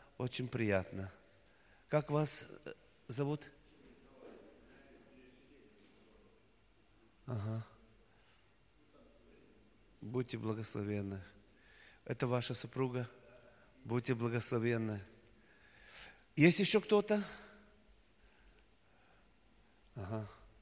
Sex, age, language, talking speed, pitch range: male, 40-59, Russian, 50 wpm, 110-150 Hz